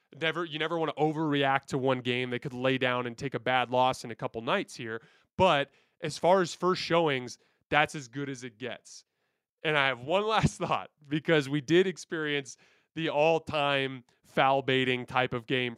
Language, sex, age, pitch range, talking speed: English, male, 20-39, 130-165 Hz, 195 wpm